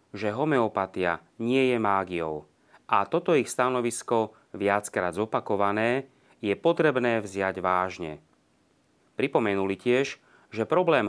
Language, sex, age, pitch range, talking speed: Slovak, male, 30-49, 100-125 Hz, 105 wpm